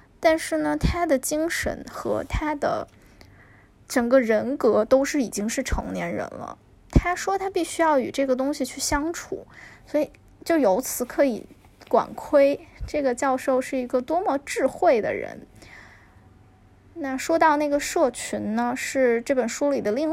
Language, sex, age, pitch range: Chinese, female, 10-29, 245-310 Hz